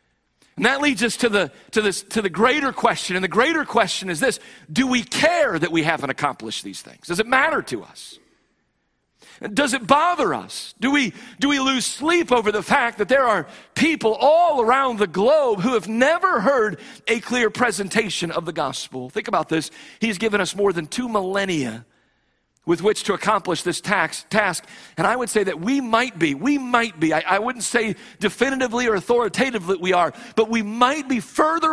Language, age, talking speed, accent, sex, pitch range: English, 50-69, 200 wpm, American, male, 170-240 Hz